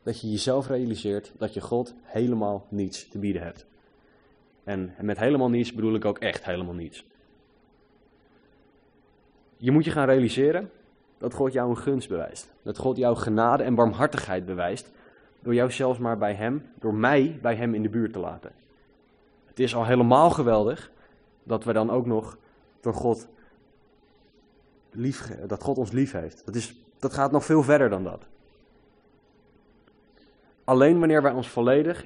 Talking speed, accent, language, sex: 165 wpm, Dutch, Dutch, male